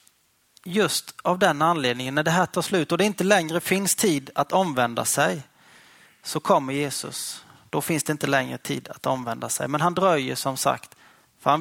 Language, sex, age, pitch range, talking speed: Swedish, male, 30-49, 130-170 Hz, 190 wpm